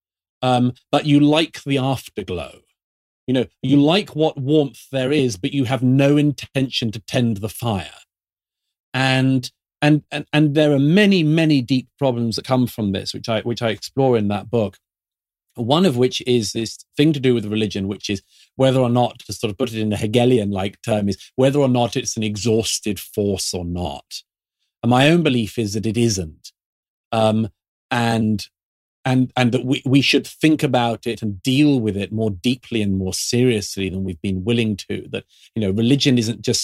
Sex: male